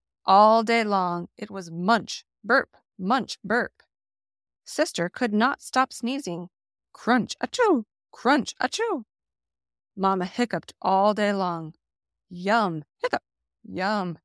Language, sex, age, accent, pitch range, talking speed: English, female, 30-49, American, 175-245 Hz, 110 wpm